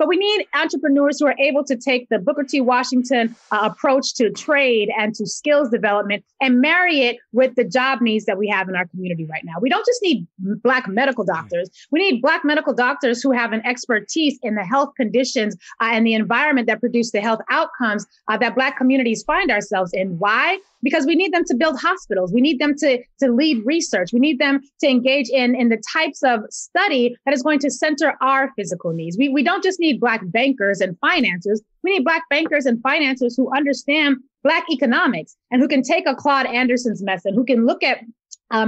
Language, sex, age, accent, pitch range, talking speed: English, female, 30-49, American, 220-290 Hz, 215 wpm